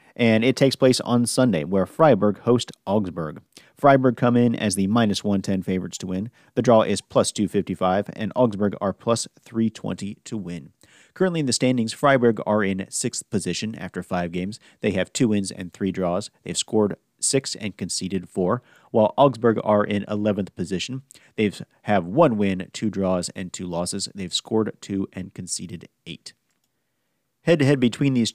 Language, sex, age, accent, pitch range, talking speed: English, male, 40-59, American, 95-120 Hz, 170 wpm